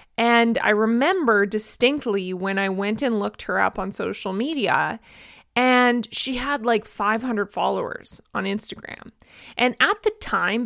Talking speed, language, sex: 145 wpm, English, female